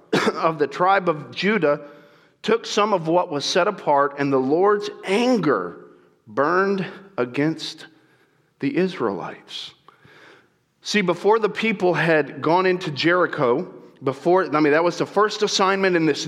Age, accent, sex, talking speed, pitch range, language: 40-59, American, male, 140 wpm, 165-225 Hz, English